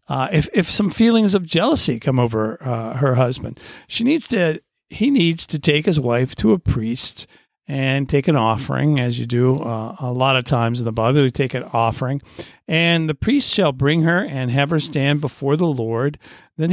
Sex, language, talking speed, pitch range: male, English, 205 wpm, 125-165 Hz